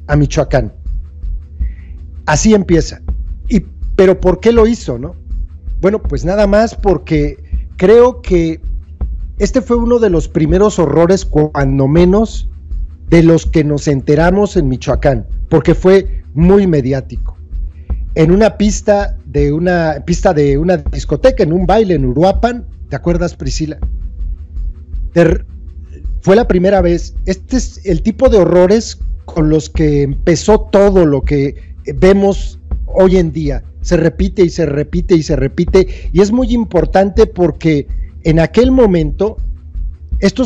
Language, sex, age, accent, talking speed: Spanish, male, 40-59, Mexican, 140 wpm